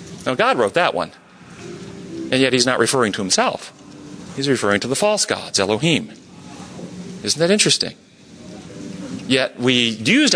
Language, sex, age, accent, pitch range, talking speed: English, male, 40-59, American, 110-145 Hz, 145 wpm